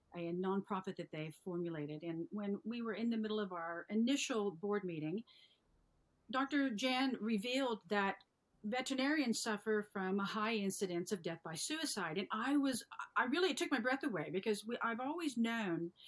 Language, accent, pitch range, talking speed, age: English, American, 180-225 Hz, 165 wpm, 50-69